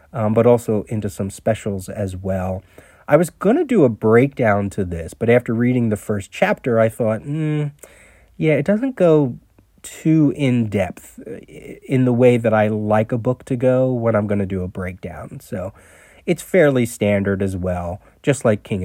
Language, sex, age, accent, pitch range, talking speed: English, male, 30-49, American, 100-125 Hz, 185 wpm